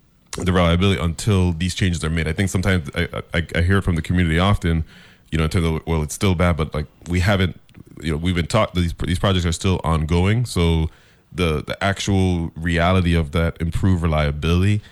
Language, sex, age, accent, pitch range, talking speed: English, male, 20-39, American, 80-95 Hz, 210 wpm